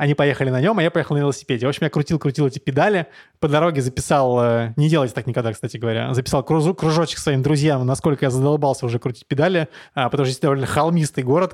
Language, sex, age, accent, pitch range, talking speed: Russian, male, 20-39, native, 135-170 Hz, 210 wpm